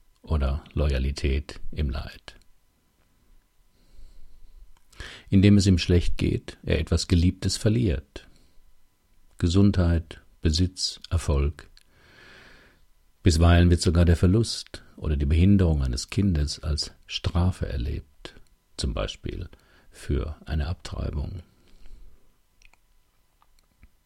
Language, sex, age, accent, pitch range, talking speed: German, male, 50-69, German, 75-95 Hz, 85 wpm